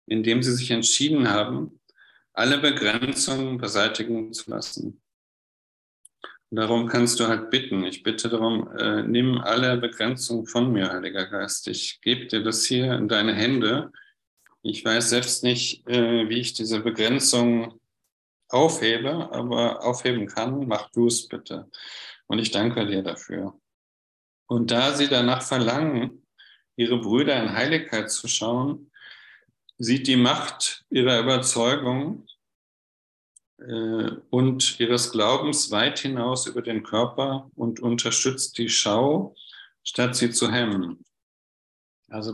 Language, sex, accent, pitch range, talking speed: German, male, German, 110-125 Hz, 130 wpm